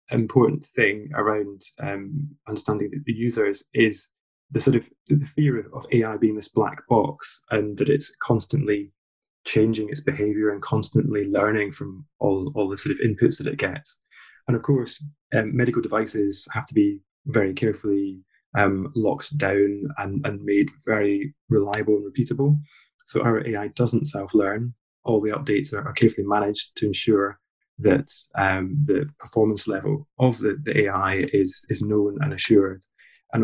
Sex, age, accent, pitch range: male, 20-39, British, 100-140 Hz